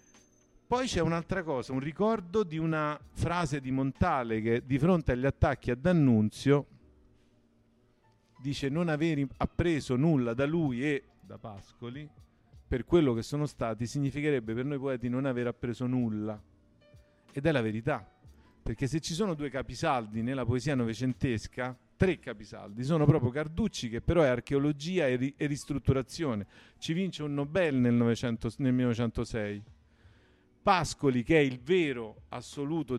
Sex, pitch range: male, 120-155 Hz